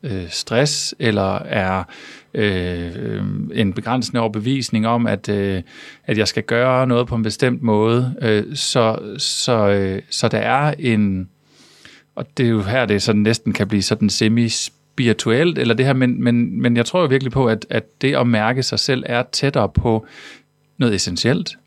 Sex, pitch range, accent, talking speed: male, 110-130 Hz, native, 180 wpm